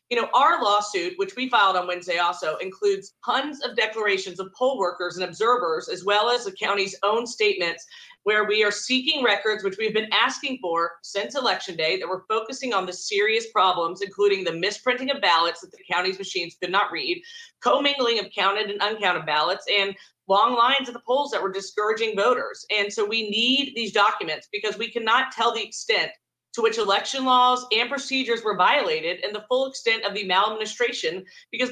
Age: 40-59